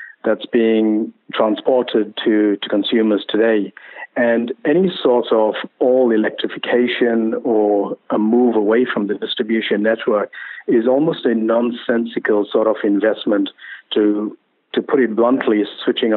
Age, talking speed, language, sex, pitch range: 50-69, 125 wpm, English, male, 105-120 Hz